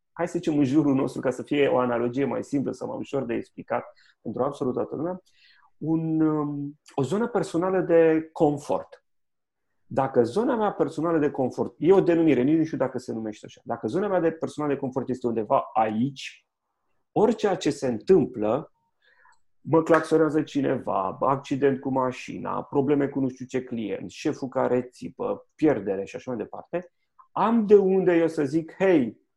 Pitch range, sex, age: 125-160 Hz, male, 30-49